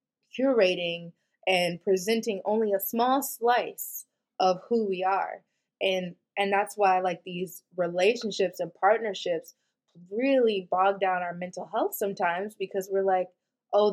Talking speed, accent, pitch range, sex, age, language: 135 wpm, American, 170-200 Hz, female, 20-39, English